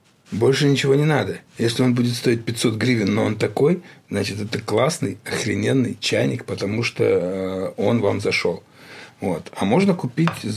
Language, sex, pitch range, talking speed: Russian, male, 110-140 Hz, 160 wpm